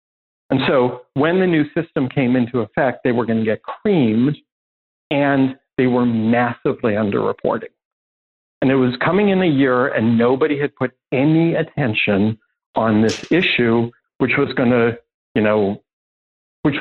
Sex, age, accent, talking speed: male, 50-69, American, 155 wpm